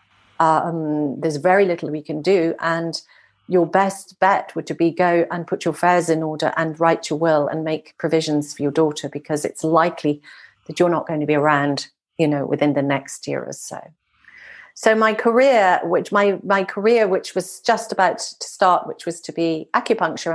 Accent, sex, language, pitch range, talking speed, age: British, female, English, 165-200 Hz, 200 wpm, 40-59